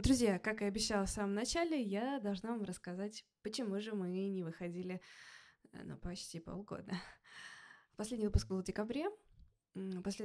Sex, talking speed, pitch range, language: female, 145 wpm, 180-210 Hz, Russian